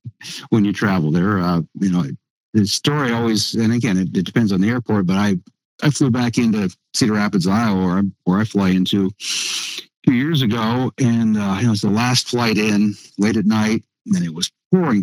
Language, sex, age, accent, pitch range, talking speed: English, male, 60-79, American, 95-125 Hz, 215 wpm